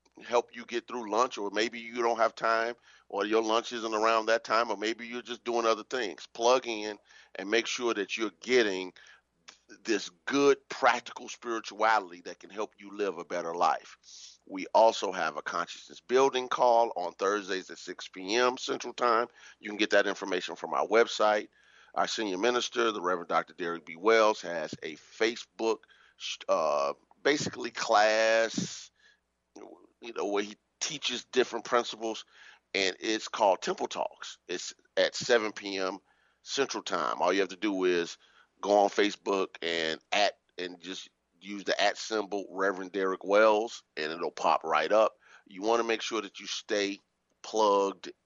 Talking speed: 165 wpm